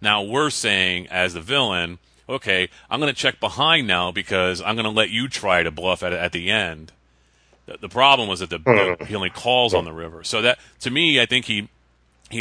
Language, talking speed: English, 225 wpm